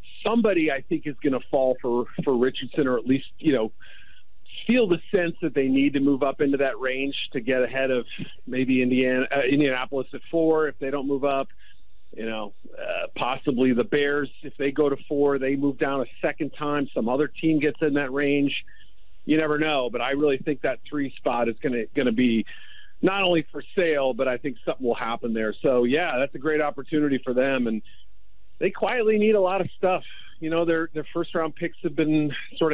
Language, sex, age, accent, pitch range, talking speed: English, male, 40-59, American, 130-155 Hz, 220 wpm